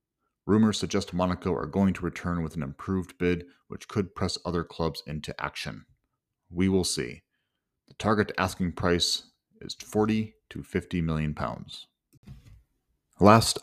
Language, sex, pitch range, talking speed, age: English, male, 80-105 Hz, 140 wpm, 30-49